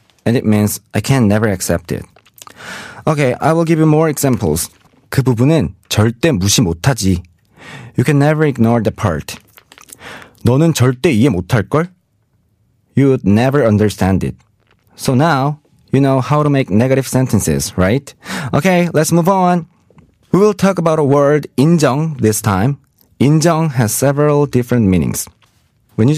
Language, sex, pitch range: Korean, male, 105-140 Hz